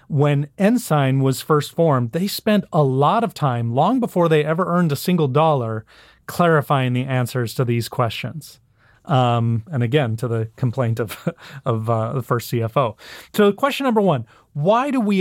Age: 30-49